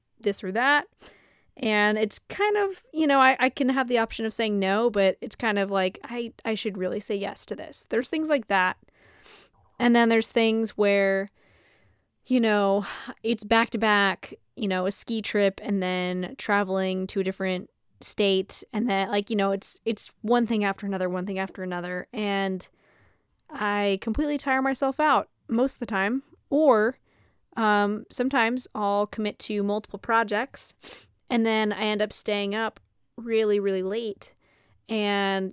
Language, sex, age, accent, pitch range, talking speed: English, female, 20-39, American, 195-230 Hz, 170 wpm